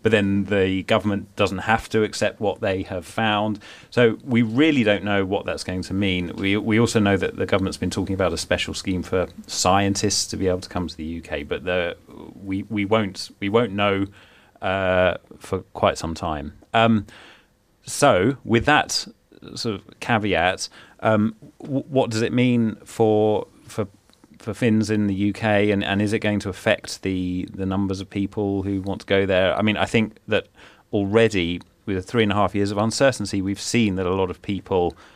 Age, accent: 30-49, British